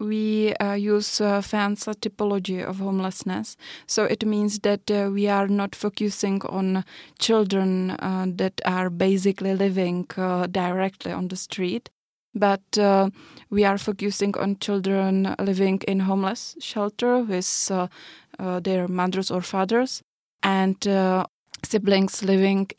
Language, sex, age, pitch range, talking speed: Finnish, female, 20-39, 185-205 Hz, 135 wpm